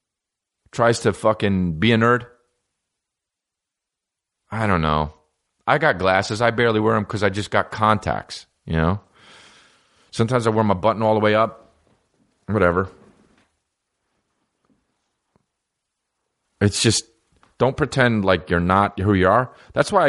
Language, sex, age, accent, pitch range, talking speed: English, male, 40-59, American, 80-110 Hz, 135 wpm